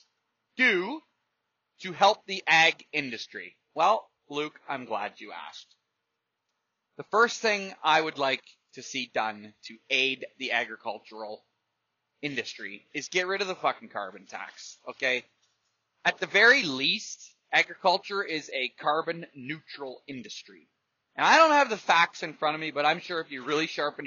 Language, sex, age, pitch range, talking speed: English, male, 30-49, 125-175 Hz, 155 wpm